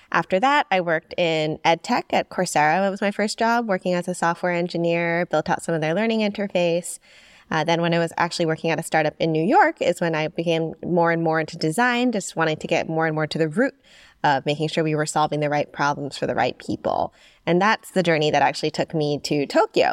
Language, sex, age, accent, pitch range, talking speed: English, female, 20-39, American, 155-195 Hz, 245 wpm